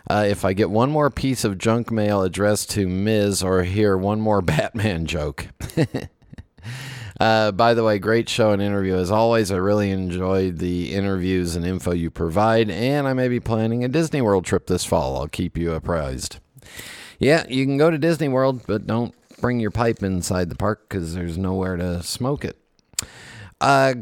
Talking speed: 185 wpm